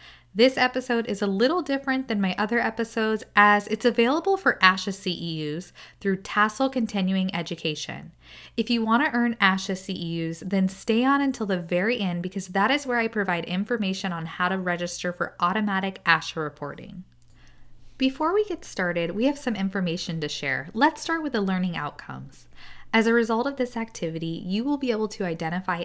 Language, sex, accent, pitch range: English, female, American, 175-235 Hz